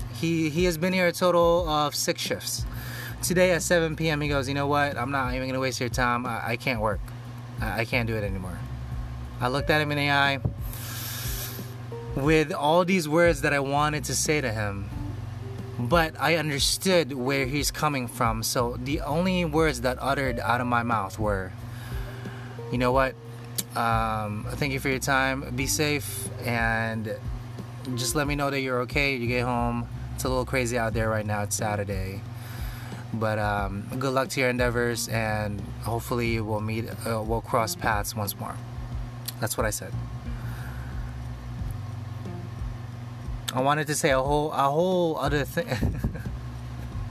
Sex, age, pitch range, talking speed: male, 20-39, 115-135 Hz, 170 wpm